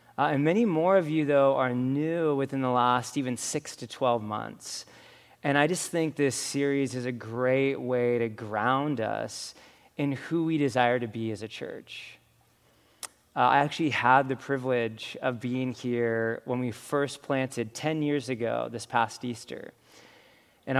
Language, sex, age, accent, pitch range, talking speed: English, male, 20-39, American, 120-140 Hz, 170 wpm